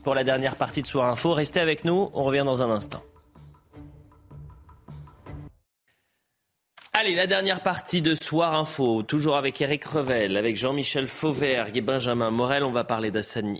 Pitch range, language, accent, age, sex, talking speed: 100-130 Hz, French, French, 30-49, male, 160 wpm